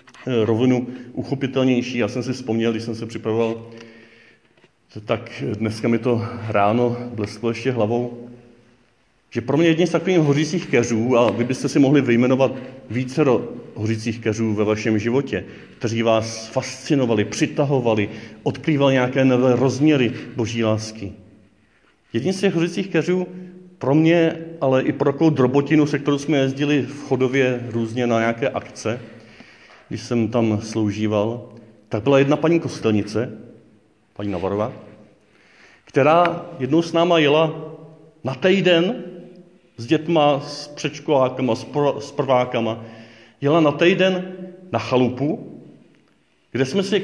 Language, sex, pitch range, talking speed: Czech, male, 110-145 Hz, 135 wpm